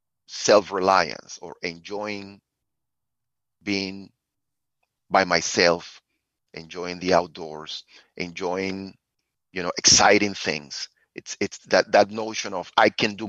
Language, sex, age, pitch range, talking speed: English, male, 30-49, 90-110 Hz, 110 wpm